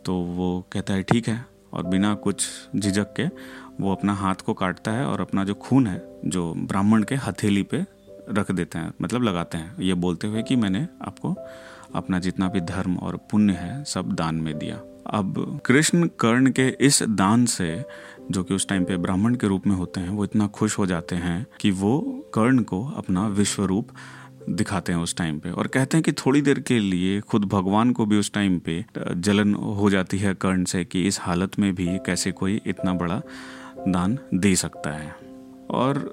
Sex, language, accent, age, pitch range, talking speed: male, Hindi, native, 30-49, 90-110 Hz, 200 wpm